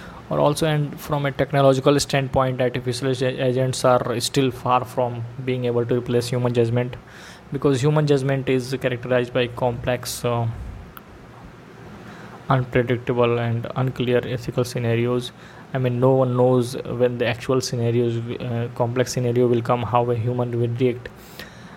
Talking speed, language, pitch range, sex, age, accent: 140 wpm, Hindi, 120-130 Hz, male, 20-39, native